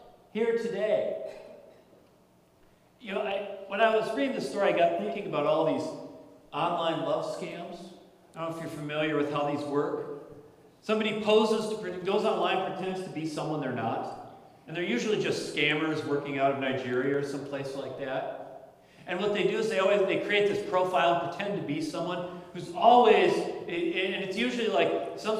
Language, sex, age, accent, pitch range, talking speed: English, male, 40-59, American, 165-220 Hz, 180 wpm